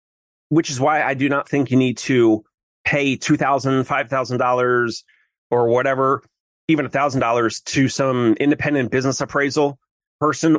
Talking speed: 130 wpm